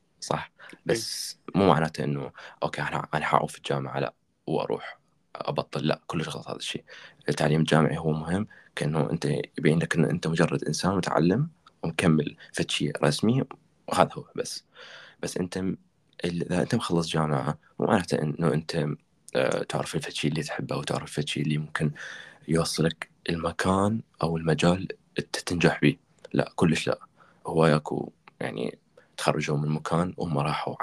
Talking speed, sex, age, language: 140 wpm, male, 20-39, Arabic